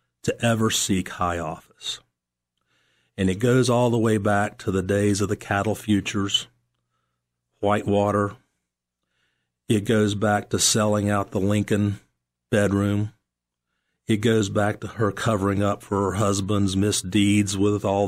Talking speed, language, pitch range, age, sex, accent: 140 wpm, English, 85-115 Hz, 40-59, male, American